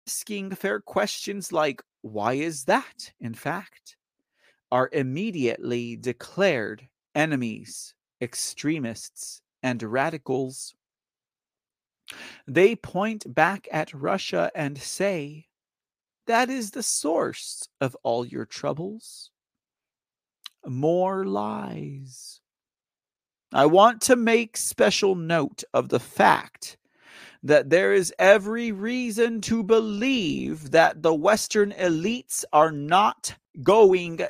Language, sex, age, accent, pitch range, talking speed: English, male, 40-59, American, 155-255 Hz, 100 wpm